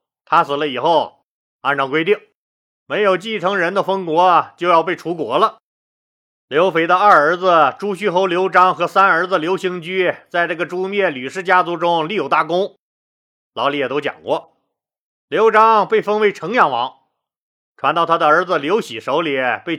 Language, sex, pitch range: Chinese, male, 160-195 Hz